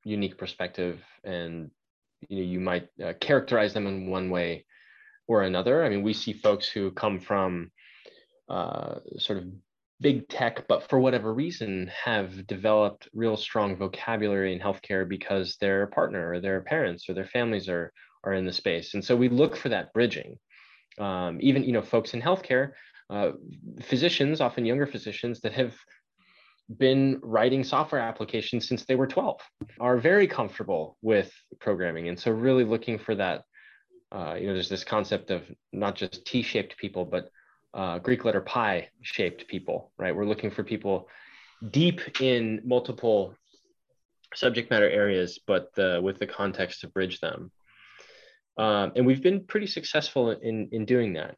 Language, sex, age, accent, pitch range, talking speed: English, male, 20-39, American, 95-125 Hz, 160 wpm